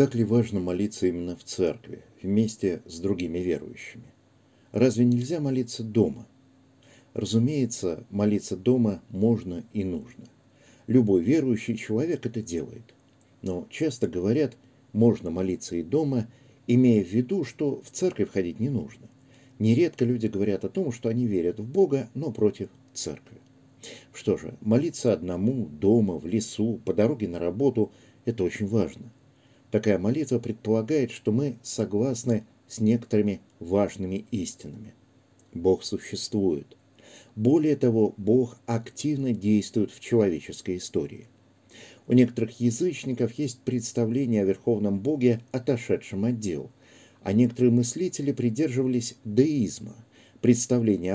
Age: 50-69